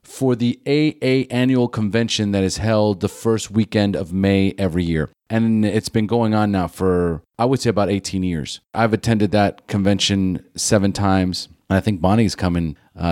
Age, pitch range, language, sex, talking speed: 30-49, 95-115 Hz, English, male, 185 wpm